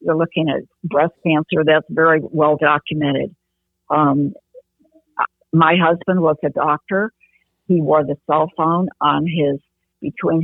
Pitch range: 145-175 Hz